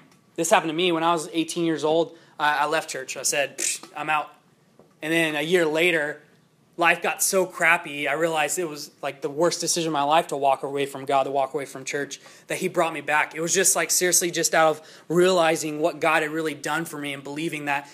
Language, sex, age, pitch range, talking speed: English, male, 20-39, 145-170 Hz, 240 wpm